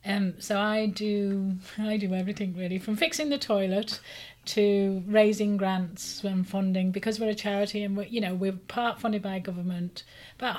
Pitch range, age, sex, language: 185-210 Hz, 40-59, female, English